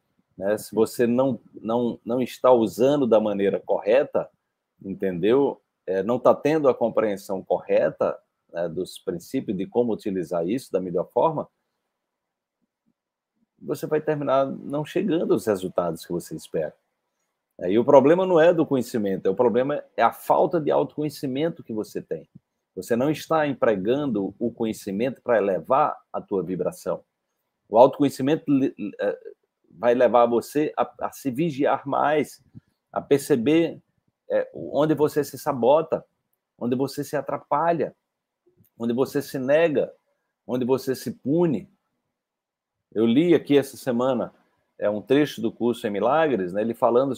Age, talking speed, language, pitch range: 40-59, 150 wpm, Portuguese, 120-155 Hz